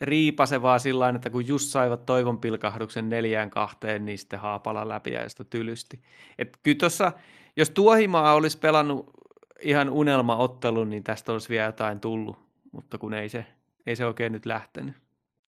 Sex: male